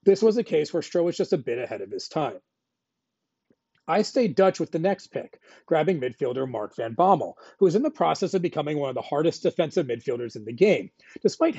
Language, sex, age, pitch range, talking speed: English, male, 40-59, 140-200 Hz, 225 wpm